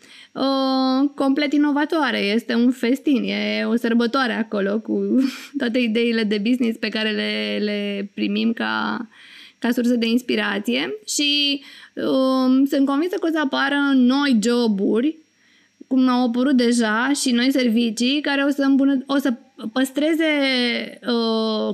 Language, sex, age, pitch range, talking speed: Romanian, female, 20-39, 230-275 Hz, 140 wpm